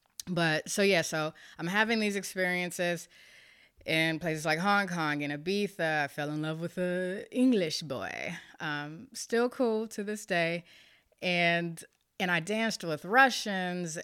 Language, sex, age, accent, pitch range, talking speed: English, female, 30-49, American, 155-205 Hz, 150 wpm